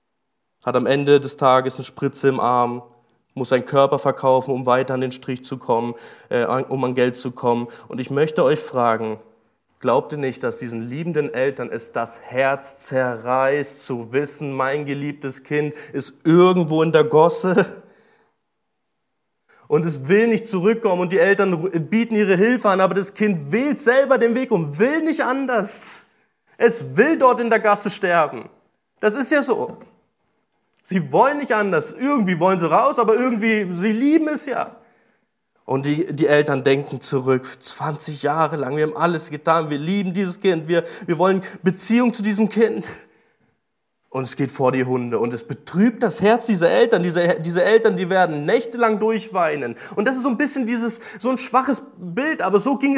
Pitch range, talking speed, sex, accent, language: 140-225 Hz, 180 wpm, male, German, German